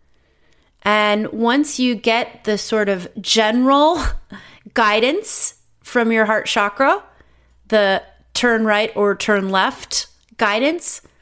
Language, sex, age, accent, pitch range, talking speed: English, female, 30-49, American, 205-275 Hz, 105 wpm